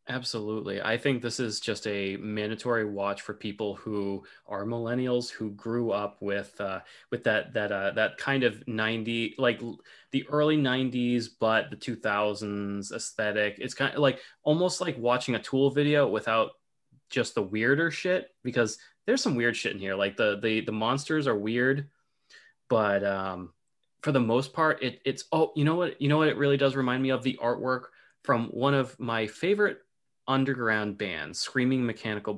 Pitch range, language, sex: 105-135 Hz, English, male